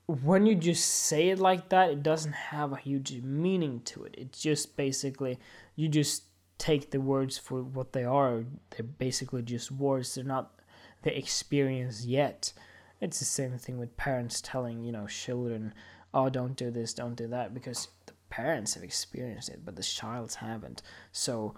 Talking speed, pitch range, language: 180 wpm, 95-150 Hz, English